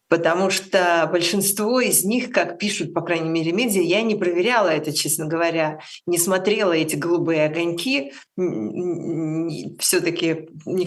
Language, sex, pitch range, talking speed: Russian, female, 165-200 Hz, 135 wpm